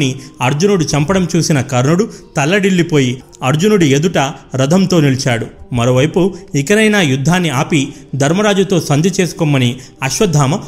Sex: male